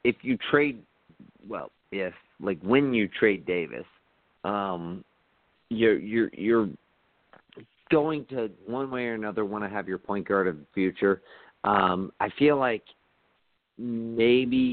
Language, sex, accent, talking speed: English, male, American, 140 wpm